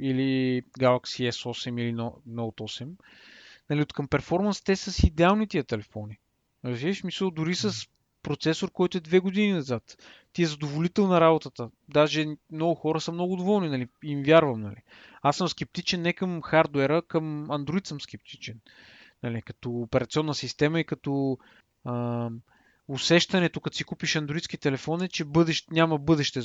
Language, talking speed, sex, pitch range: Bulgarian, 150 wpm, male, 130-180 Hz